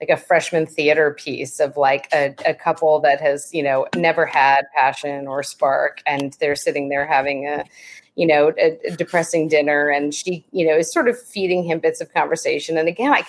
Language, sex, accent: English, female, American